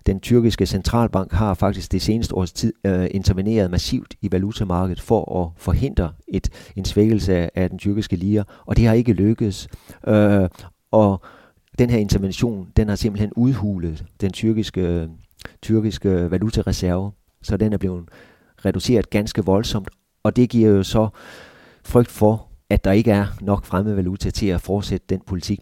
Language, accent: Danish, native